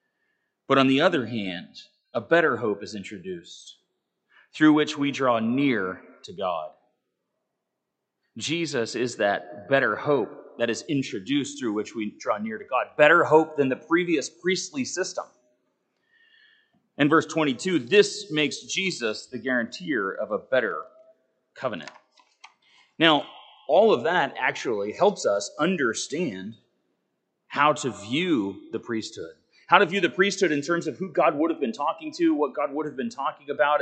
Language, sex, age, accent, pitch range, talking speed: English, male, 30-49, American, 130-195 Hz, 155 wpm